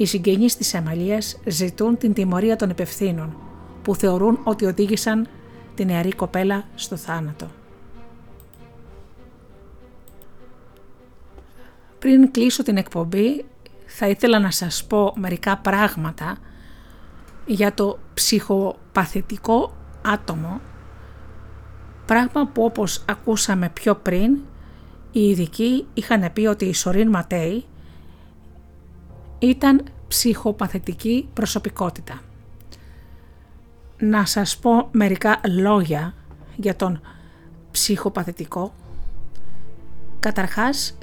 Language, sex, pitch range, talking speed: Greek, female, 160-220 Hz, 85 wpm